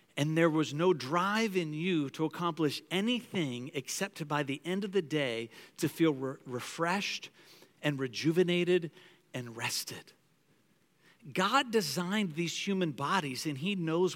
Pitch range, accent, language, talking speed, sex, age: 155-205 Hz, American, English, 135 wpm, male, 50-69